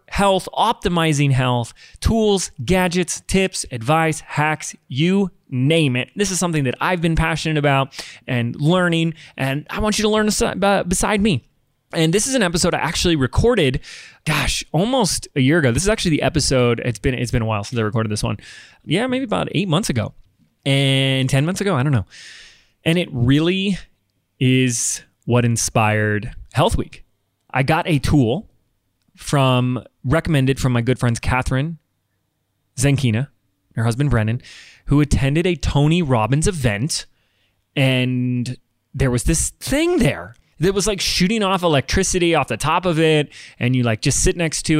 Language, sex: English, male